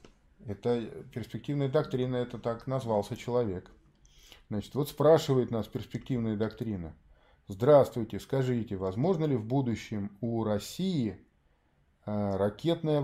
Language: Russian